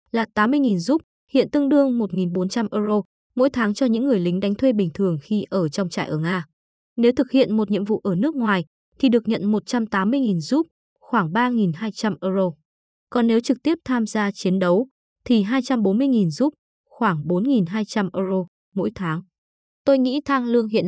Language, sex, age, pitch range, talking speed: Vietnamese, female, 20-39, 195-250 Hz, 180 wpm